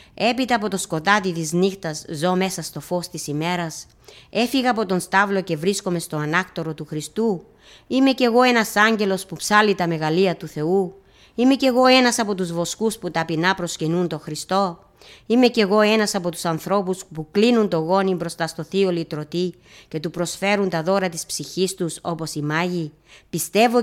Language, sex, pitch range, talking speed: Greek, female, 170-215 Hz, 180 wpm